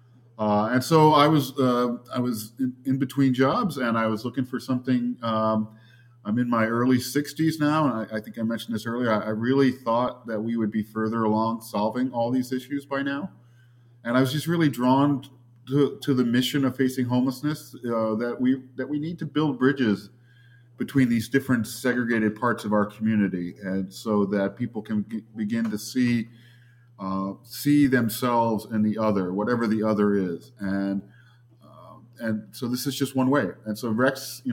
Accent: American